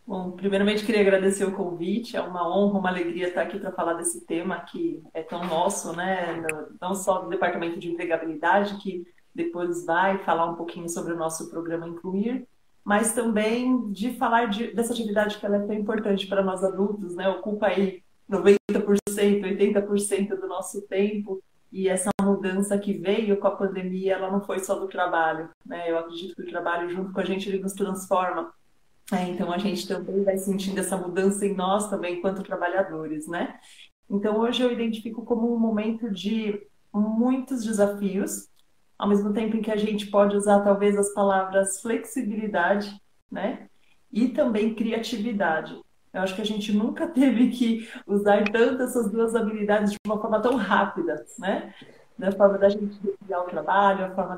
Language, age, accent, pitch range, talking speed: Portuguese, 30-49, Brazilian, 180-210 Hz, 175 wpm